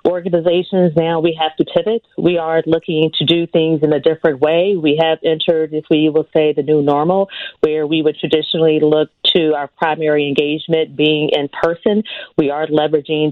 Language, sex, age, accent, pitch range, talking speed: English, female, 30-49, American, 145-165 Hz, 185 wpm